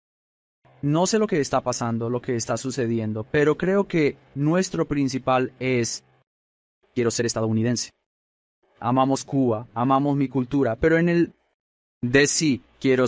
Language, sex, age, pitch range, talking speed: Spanish, male, 30-49, 115-150 Hz, 140 wpm